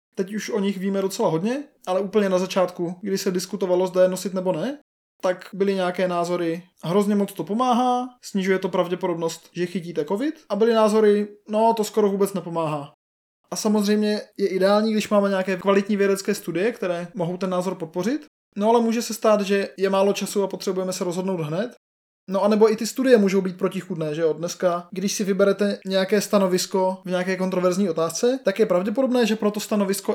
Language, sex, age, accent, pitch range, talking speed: Czech, male, 20-39, native, 180-210 Hz, 195 wpm